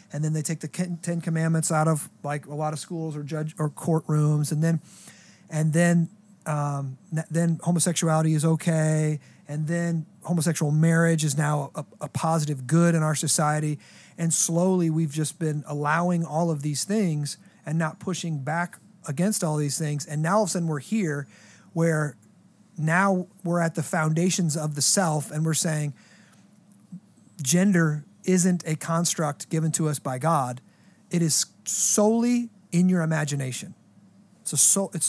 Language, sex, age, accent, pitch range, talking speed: English, male, 30-49, American, 150-180 Hz, 160 wpm